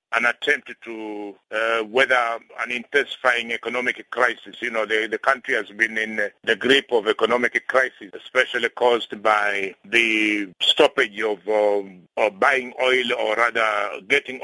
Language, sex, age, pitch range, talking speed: English, male, 50-69, 115-135 Hz, 140 wpm